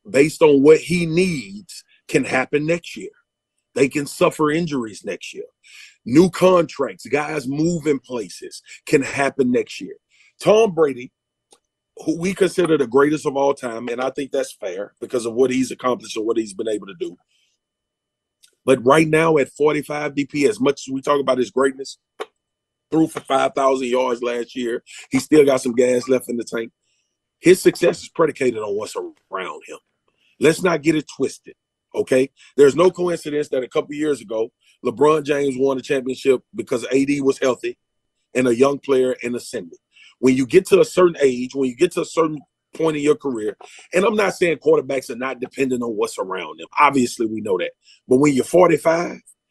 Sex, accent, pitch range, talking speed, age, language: male, American, 130-180 Hz, 185 wpm, 30-49, English